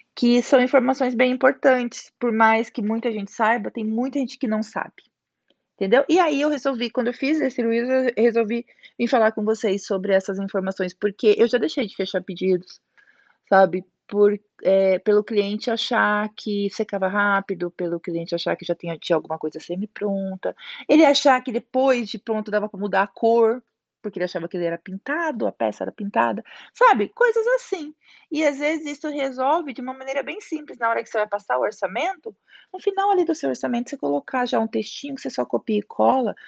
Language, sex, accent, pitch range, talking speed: Portuguese, female, Brazilian, 190-260 Hz, 200 wpm